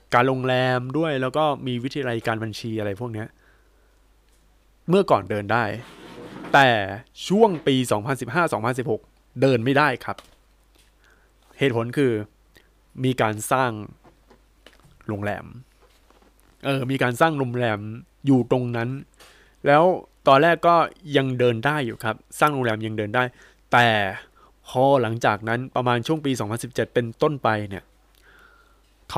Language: Thai